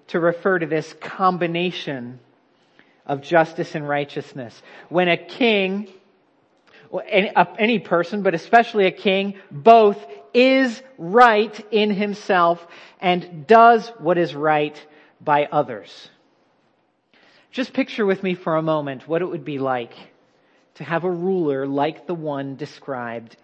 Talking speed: 130 wpm